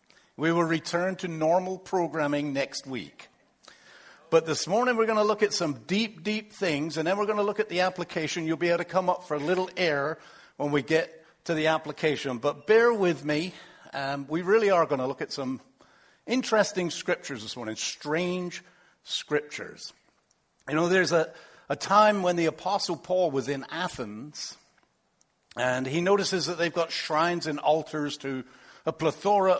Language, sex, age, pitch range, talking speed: English, male, 60-79, 150-200 Hz, 180 wpm